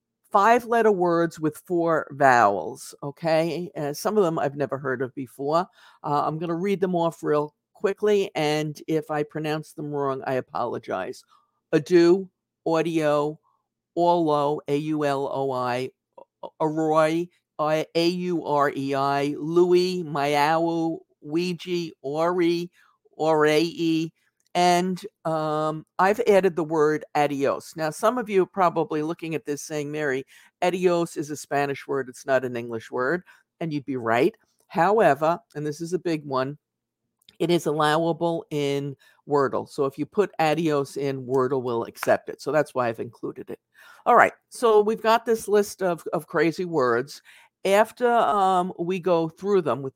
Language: English